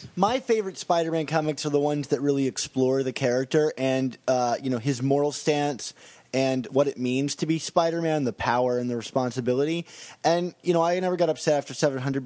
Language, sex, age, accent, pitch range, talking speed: English, male, 20-39, American, 130-165 Hz, 195 wpm